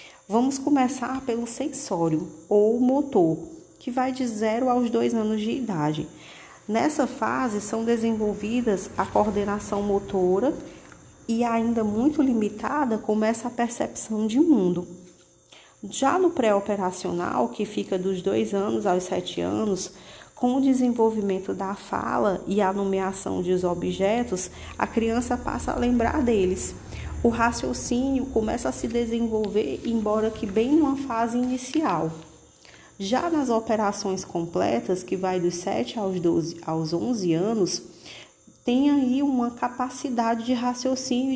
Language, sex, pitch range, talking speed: Portuguese, female, 190-245 Hz, 130 wpm